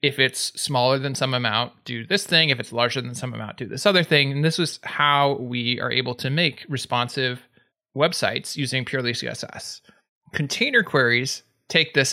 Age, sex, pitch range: 20-39, male, 130-165 Hz